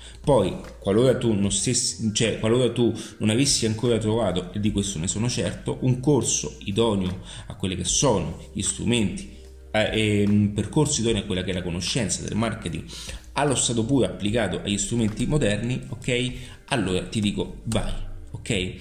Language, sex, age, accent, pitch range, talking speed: Italian, male, 30-49, native, 95-125 Hz, 170 wpm